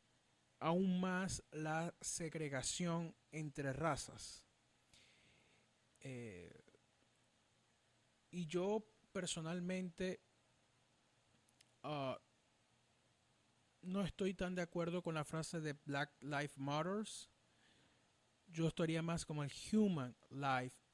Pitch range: 130-170 Hz